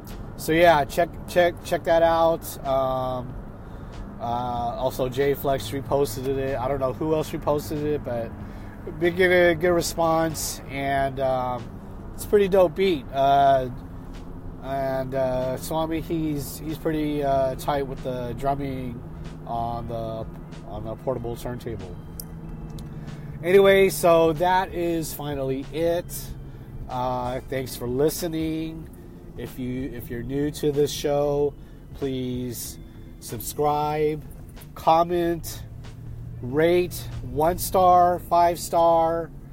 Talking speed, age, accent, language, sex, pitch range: 120 wpm, 30-49, American, English, male, 120-155 Hz